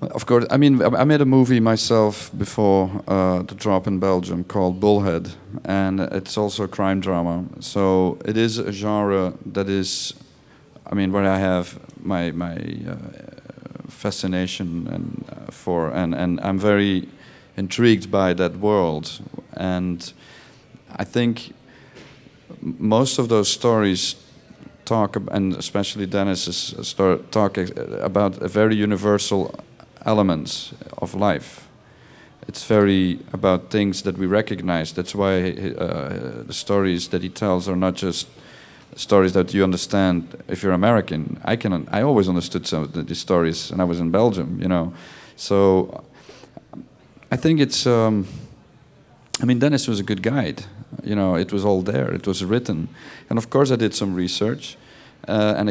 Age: 40-59